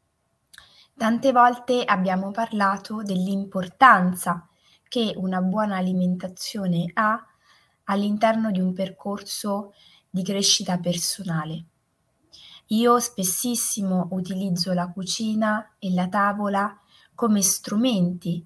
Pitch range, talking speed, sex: 185-225 Hz, 90 wpm, female